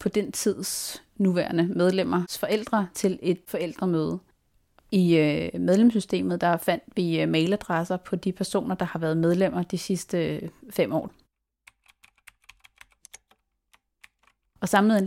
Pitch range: 175-200 Hz